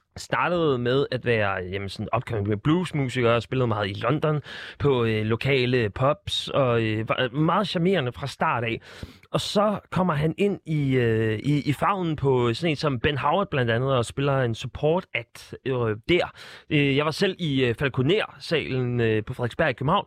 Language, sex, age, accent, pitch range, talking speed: Danish, male, 30-49, native, 125-175 Hz, 185 wpm